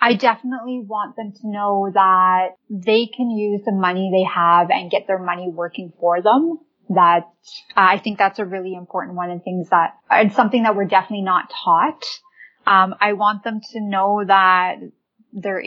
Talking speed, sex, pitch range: 185 wpm, female, 185-210 Hz